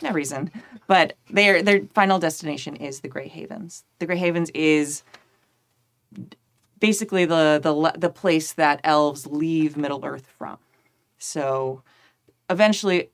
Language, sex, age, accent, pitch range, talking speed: English, female, 30-49, American, 145-175 Hz, 120 wpm